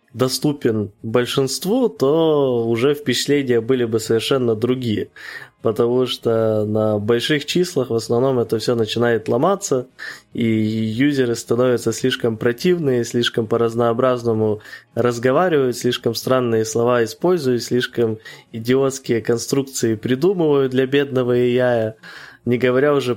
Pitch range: 115-135 Hz